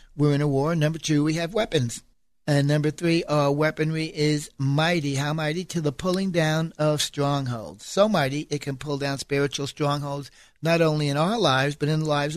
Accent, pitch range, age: American, 140-165 Hz, 60-79